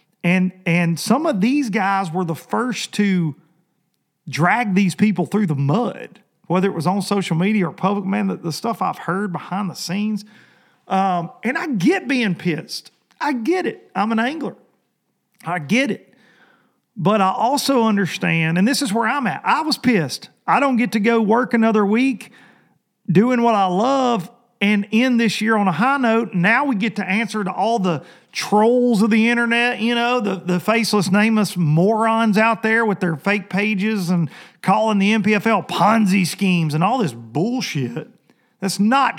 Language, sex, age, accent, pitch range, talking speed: English, male, 40-59, American, 185-230 Hz, 180 wpm